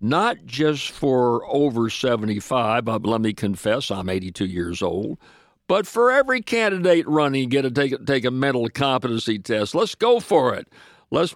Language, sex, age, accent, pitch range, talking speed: English, male, 60-79, American, 115-150 Hz, 175 wpm